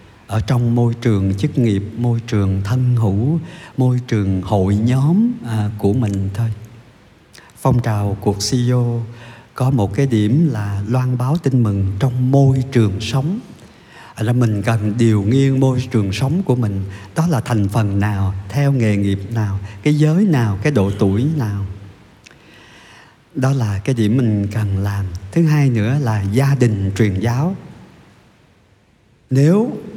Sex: male